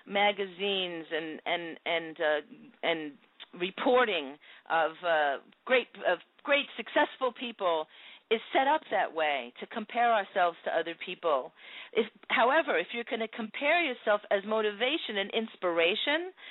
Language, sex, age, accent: English, female, 40-59, American